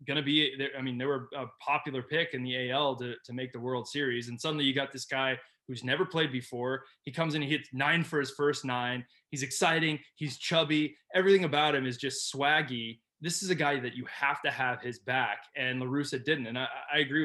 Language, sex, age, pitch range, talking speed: English, male, 20-39, 125-150 Hz, 245 wpm